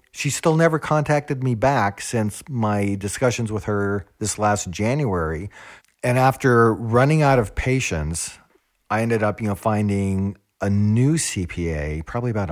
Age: 40-59